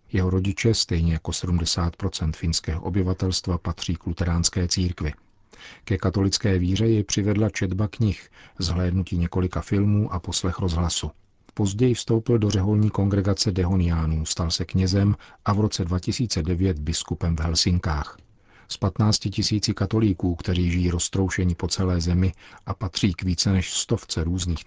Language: Czech